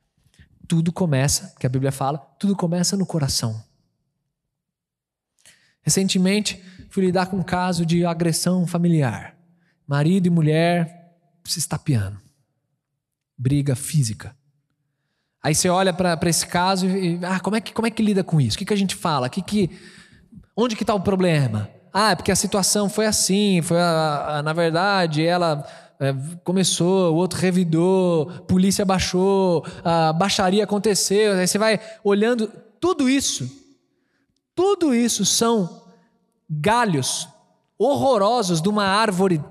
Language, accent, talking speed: Portuguese, Brazilian, 130 wpm